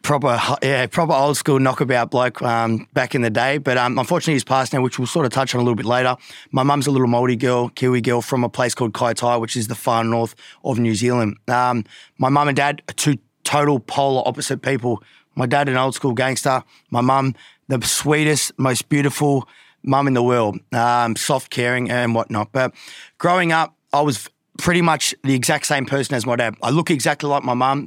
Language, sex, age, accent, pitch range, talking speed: English, male, 20-39, Australian, 120-140 Hz, 220 wpm